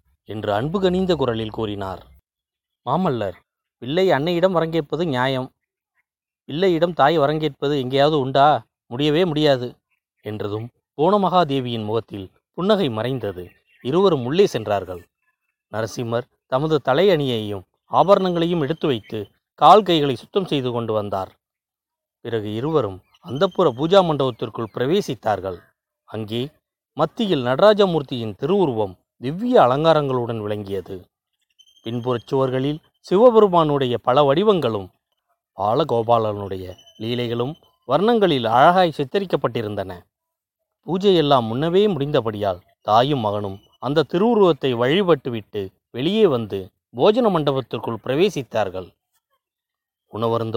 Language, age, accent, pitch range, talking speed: Tamil, 30-49, native, 115-180 Hz, 90 wpm